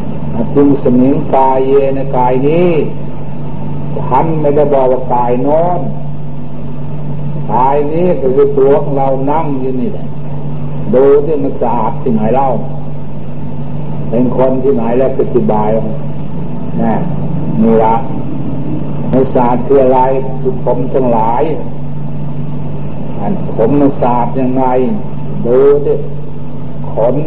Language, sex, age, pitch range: Thai, male, 60-79, 125-145 Hz